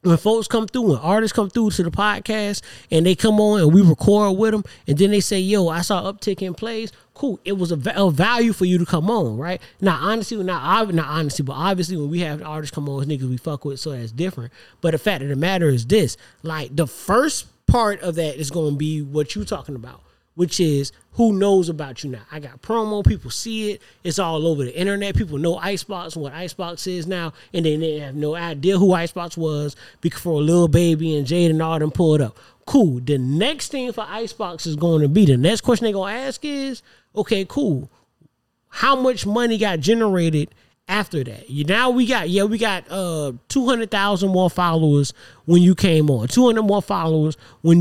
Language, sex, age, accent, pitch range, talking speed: English, male, 20-39, American, 155-210 Hz, 220 wpm